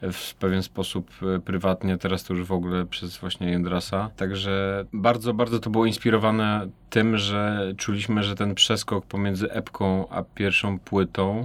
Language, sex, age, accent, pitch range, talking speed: Polish, male, 30-49, native, 95-100 Hz, 150 wpm